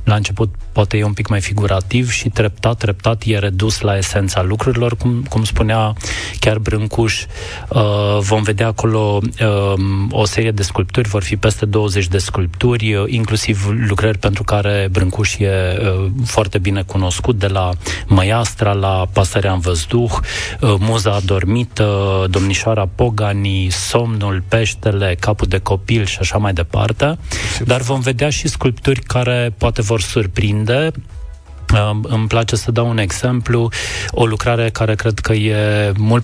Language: Romanian